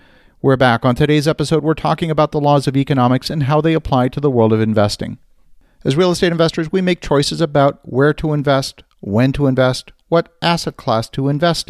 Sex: male